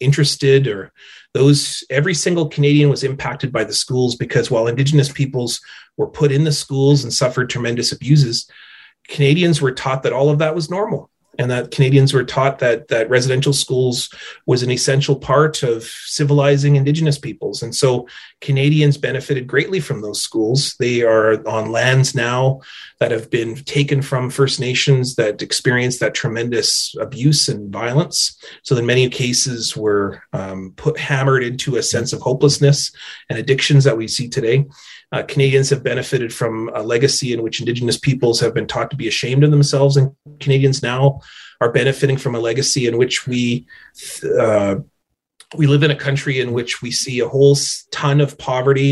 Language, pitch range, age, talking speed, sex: English, 125-145 Hz, 30-49, 175 wpm, male